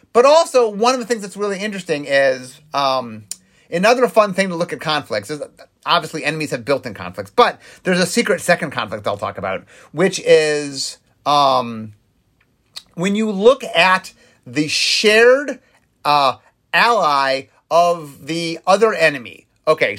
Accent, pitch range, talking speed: American, 140-200 Hz, 145 wpm